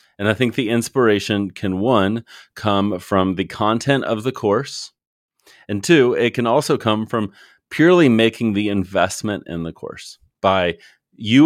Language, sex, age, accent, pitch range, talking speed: English, male, 30-49, American, 95-120 Hz, 155 wpm